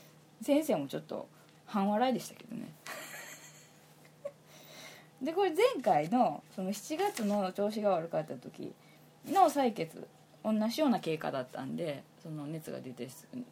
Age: 20-39